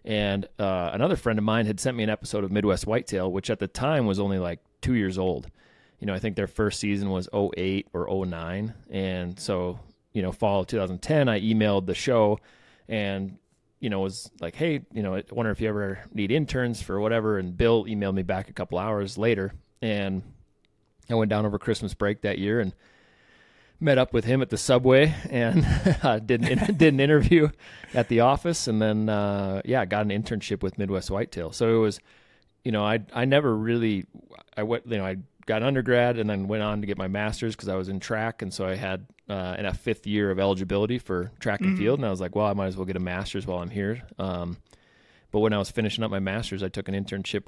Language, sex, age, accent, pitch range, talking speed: English, male, 30-49, American, 95-115 Hz, 225 wpm